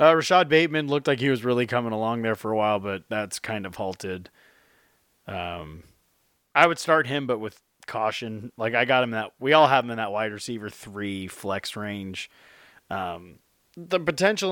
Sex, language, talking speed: male, English, 190 wpm